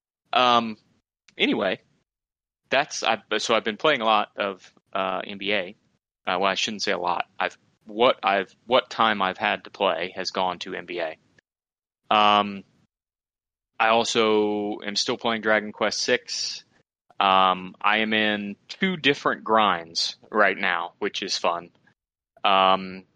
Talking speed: 145 wpm